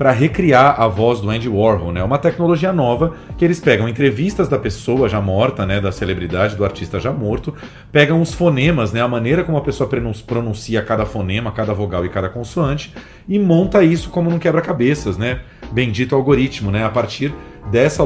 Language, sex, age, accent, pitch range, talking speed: Portuguese, male, 40-59, Brazilian, 110-150 Hz, 190 wpm